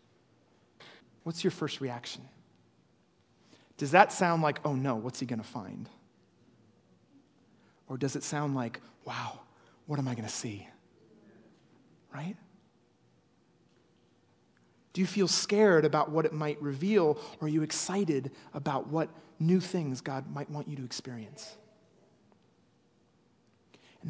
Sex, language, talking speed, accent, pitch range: male, English, 130 wpm, American, 140-180 Hz